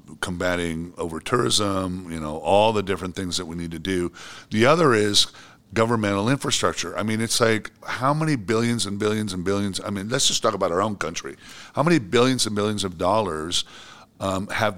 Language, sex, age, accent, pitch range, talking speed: English, male, 50-69, American, 95-115 Hz, 195 wpm